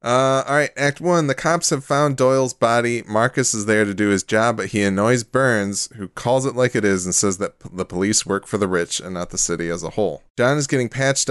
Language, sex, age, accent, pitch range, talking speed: English, male, 20-39, American, 95-125 Hz, 250 wpm